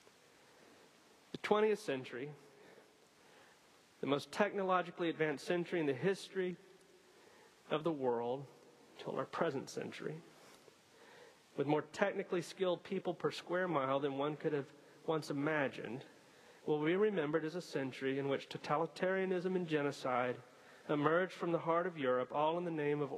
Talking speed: 135 wpm